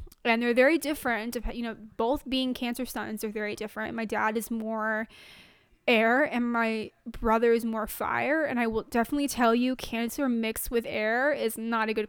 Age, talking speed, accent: 20-39, 190 wpm, American